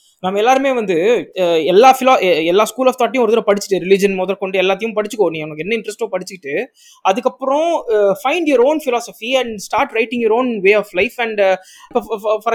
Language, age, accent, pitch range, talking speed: Tamil, 20-39, native, 190-245 Hz, 165 wpm